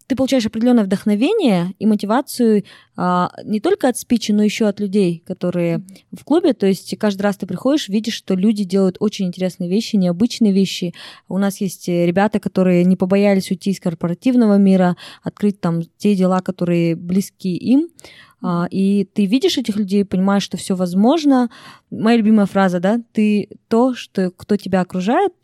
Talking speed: 165 wpm